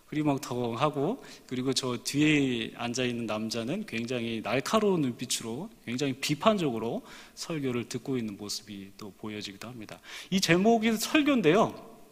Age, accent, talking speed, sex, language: 40-59, Korean, 100 wpm, male, English